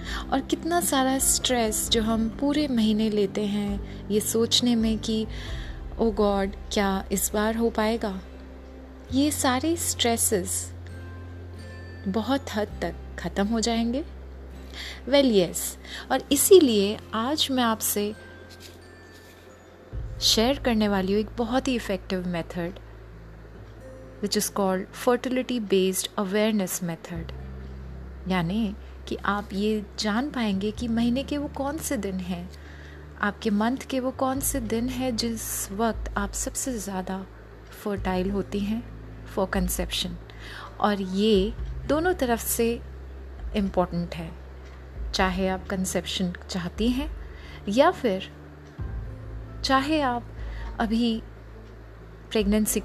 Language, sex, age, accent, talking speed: Hindi, female, 30-49, native, 120 wpm